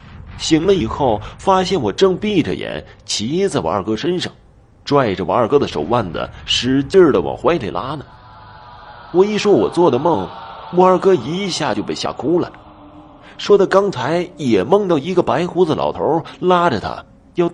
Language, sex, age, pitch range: Chinese, male, 30-49, 105-175 Hz